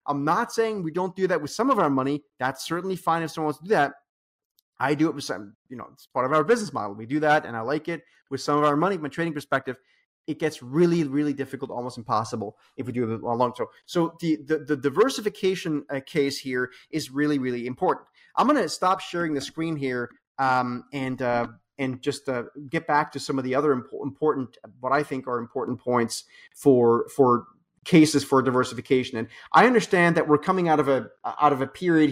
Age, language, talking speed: 30-49, English, 230 wpm